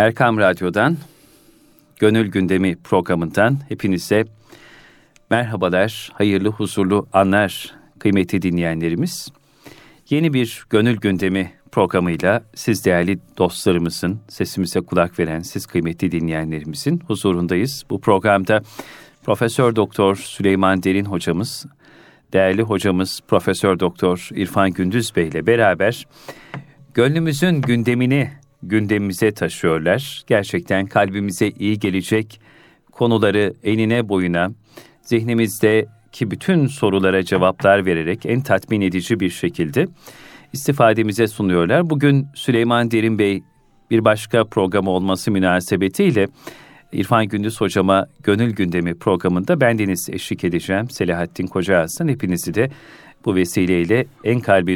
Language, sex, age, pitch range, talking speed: Turkish, male, 40-59, 95-115 Hz, 100 wpm